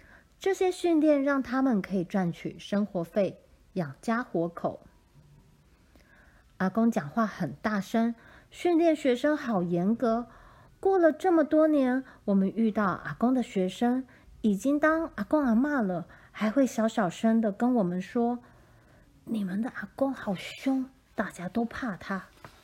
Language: Chinese